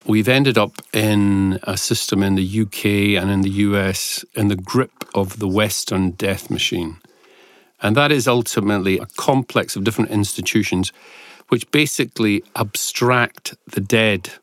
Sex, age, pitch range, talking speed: male, 40-59, 100-115 Hz, 145 wpm